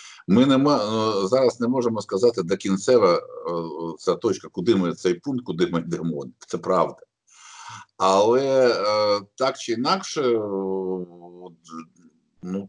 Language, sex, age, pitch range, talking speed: Ukrainian, male, 50-69, 95-125 Hz, 115 wpm